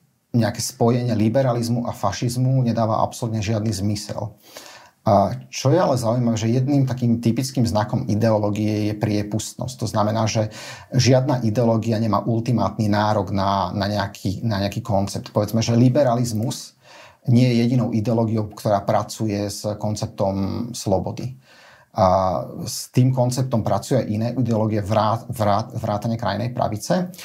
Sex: male